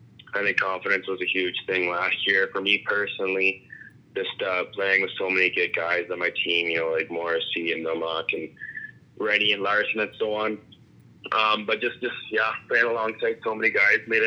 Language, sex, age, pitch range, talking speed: English, male, 20-39, 90-105 Hz, 200 wpm